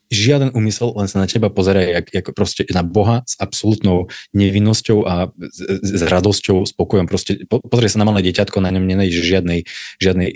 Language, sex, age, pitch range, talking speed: Slovak, male, 20-39, 90-105 Hz, 180 wpm